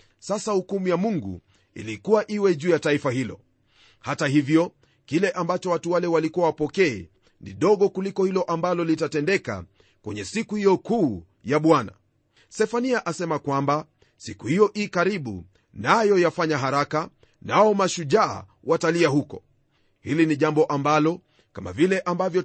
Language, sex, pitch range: Swahili, male, 140-185 Hz